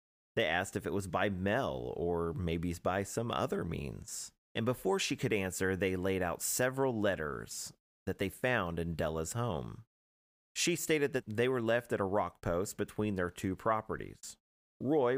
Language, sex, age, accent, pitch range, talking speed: English, male, 30-49, American, 85-110 Hz, 175 wpm